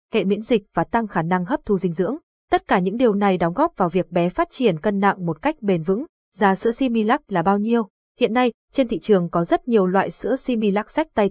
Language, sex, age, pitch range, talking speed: Vietnamese, female, 20-39, 190-235 Hz, 255 wpm